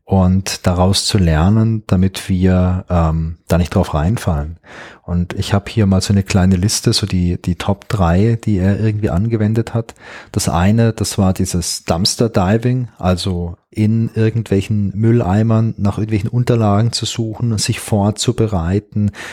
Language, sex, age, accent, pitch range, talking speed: German, male, 30-49, German, 95-115 Hz, 150 wpm